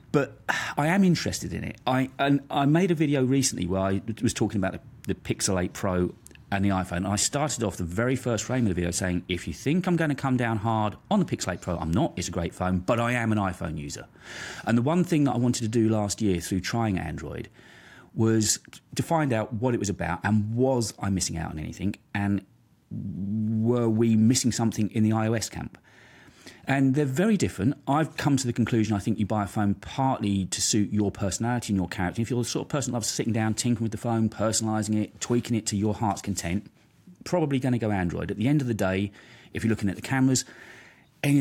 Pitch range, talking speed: 95-125 Hz, 240 wpm